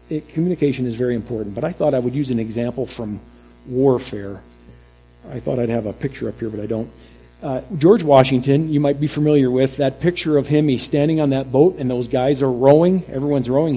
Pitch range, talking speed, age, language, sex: 115-155 Hz, 220 wpm, 50-69, English, male